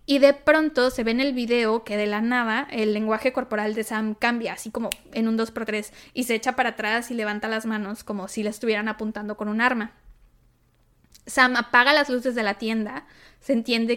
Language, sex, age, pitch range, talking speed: Spanish, female, 20-39, 220-270 Hz, 220 wpm